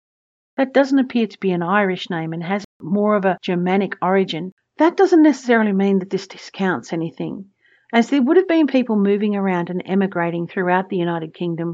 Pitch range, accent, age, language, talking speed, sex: 175-215 Hz, Australian, 50-69, English, 190 wpm, female